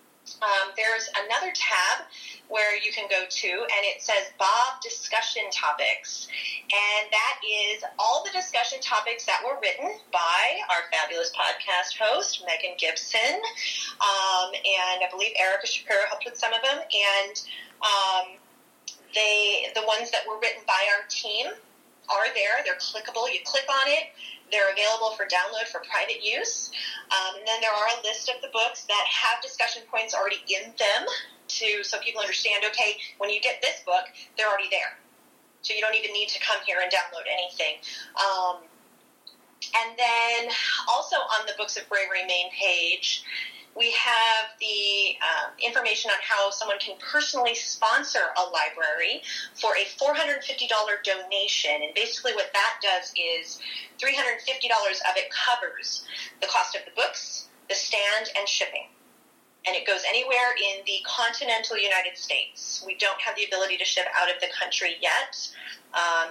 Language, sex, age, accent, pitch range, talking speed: English, female, 30-49, American, 195-245 Hz, 160 wpm